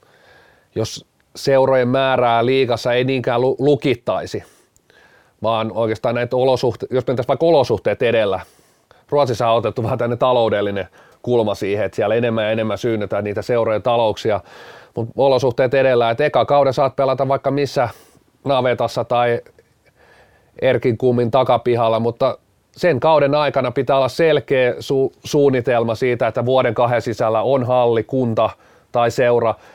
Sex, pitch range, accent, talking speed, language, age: male, 115-140 Hz, native, 135 wpm, Finnish, 30-49